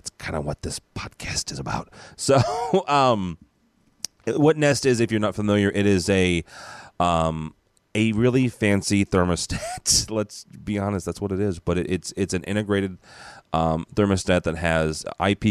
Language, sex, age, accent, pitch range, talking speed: English, male, 30-49, American, 80-105 Hz, 165 wpm